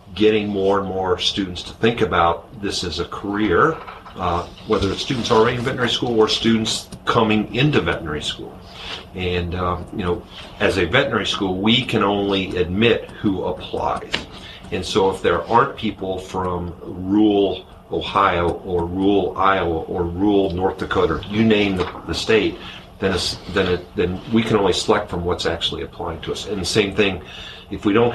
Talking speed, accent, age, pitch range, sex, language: 175 wpm, American, 50-69, 90-105 Hz, male, English